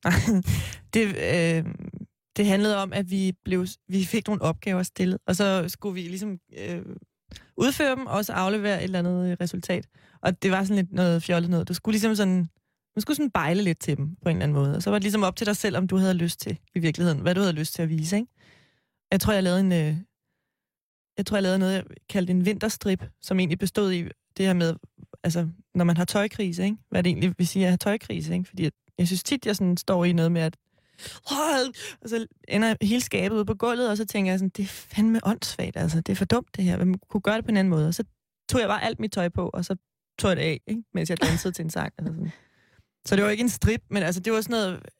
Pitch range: 170-205 Hz